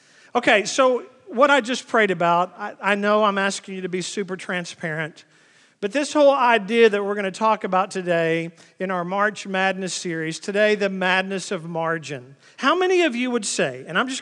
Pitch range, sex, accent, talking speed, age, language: 200-280 Hz, male, American, 200 wpm, 40-59, English